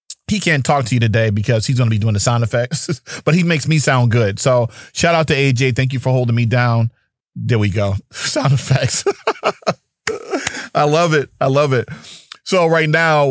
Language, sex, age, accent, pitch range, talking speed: English, male, 30-49, American, 125-160 Hz, 210 wpm